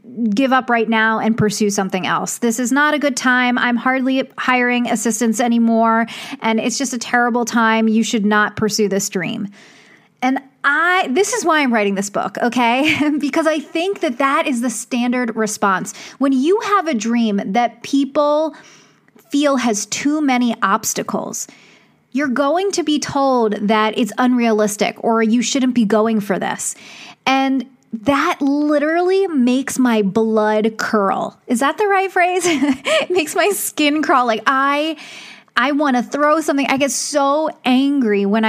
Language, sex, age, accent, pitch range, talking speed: English, female, 30-49, American, 225-285 Hz, 165 wpm